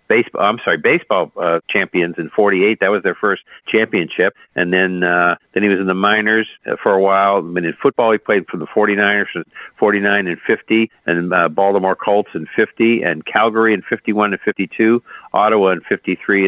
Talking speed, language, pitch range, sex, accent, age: 190 wpm, English, 95-115 Hz, male, American, 50-69